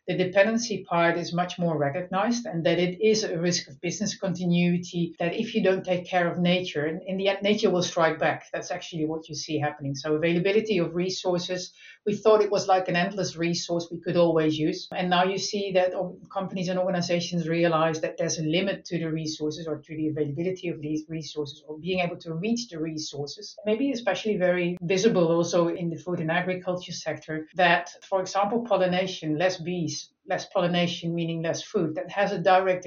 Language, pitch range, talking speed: English, 165-195 Hz, 200 wpm